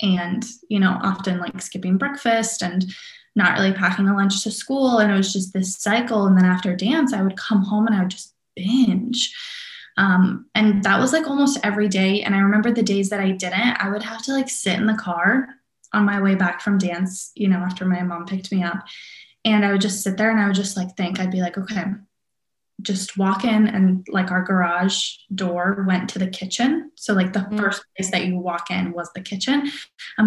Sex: female